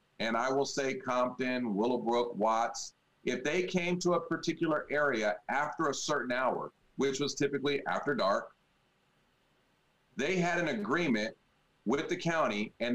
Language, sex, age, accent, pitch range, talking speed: English, male, 40-59, American, 125-180 Hz, 145 wpm